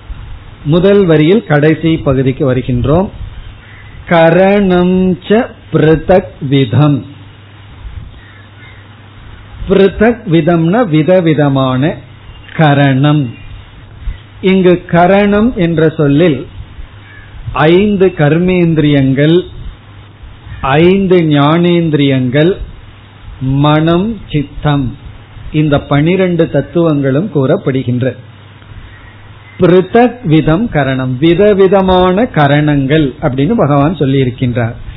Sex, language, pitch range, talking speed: male, Tamil, 115-165 Hz, 50 wpm